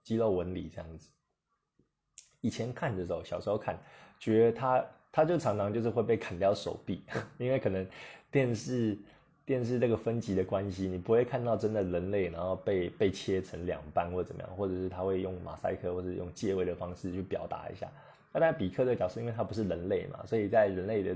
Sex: male